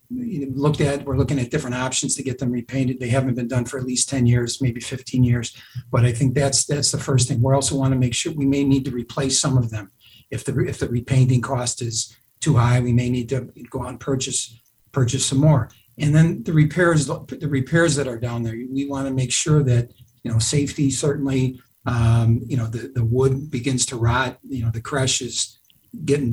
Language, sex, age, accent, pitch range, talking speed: English, male, 50-69, American, 120-140 Hz, 230 wpm